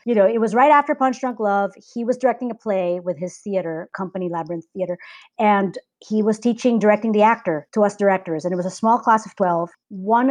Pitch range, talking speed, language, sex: 190-240 Hz, 225 wpm, English, female